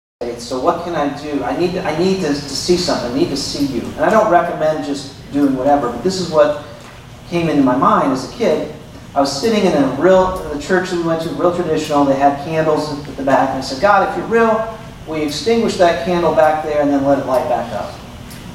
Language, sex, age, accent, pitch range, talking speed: English, male, 40-59, American, 135-175 Hz, 250 wpm